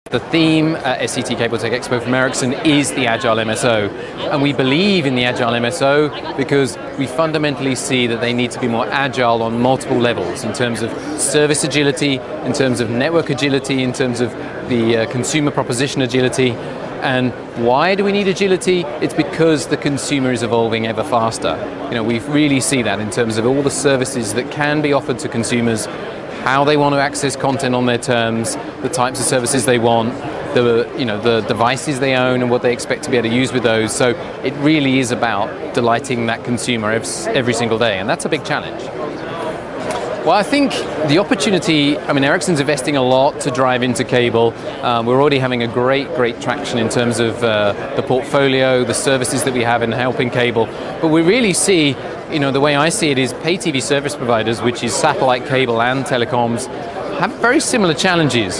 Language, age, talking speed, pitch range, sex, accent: English, 30-49, 200 wpm, 120-145 Hz, male, British